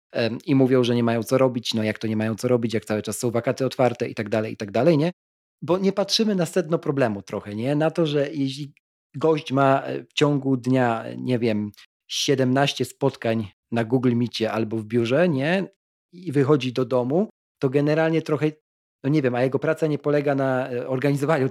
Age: 40-59